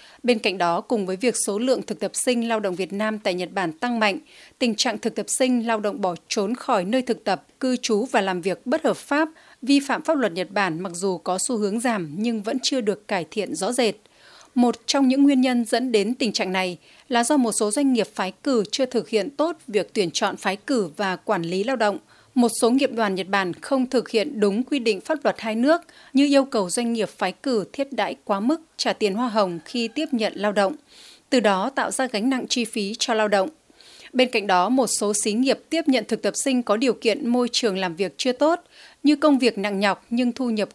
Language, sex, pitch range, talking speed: Vietnamese, female, 205-260 Hz, 250 wpm